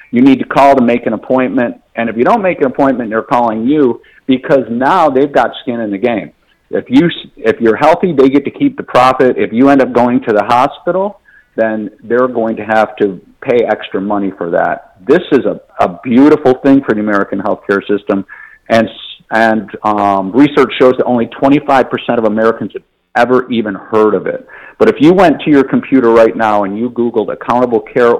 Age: 50-69